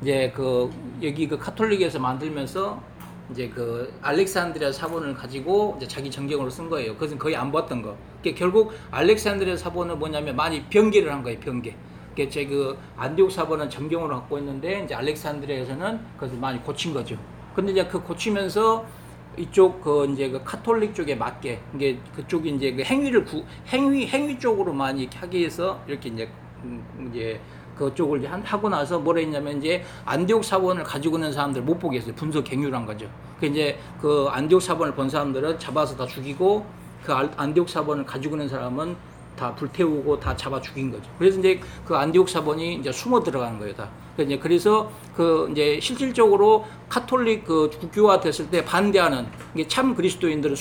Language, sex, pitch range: Korean, male, 135-180 Hz